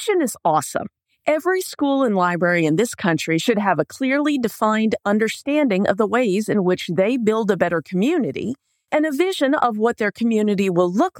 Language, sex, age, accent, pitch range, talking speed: English, female, 40-59, American, 200-310 Hz, 190 wpm